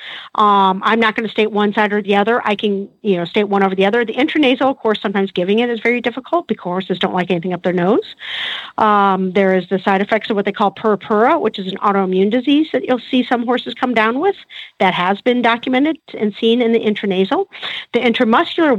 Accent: American